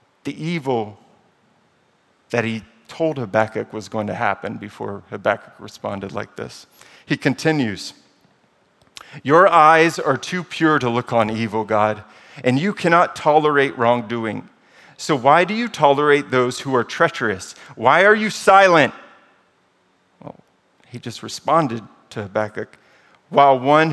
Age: 40-59